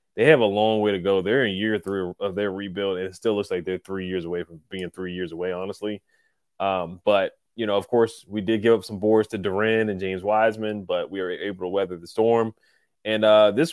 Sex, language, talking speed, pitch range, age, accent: male, English, 250 wpm, 95-115 Hz, 20-39, American